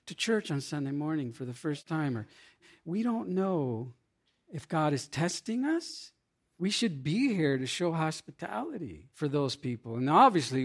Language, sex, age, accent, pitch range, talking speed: English, male, 50-69, American, 140-190 Hz, 165 wpm